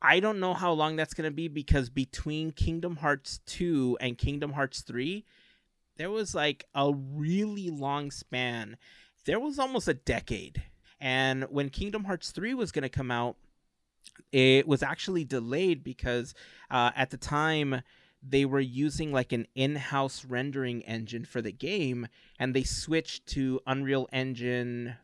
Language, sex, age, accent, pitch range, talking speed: English, male, 30-49, American, 125-155 Hz, 160 wpm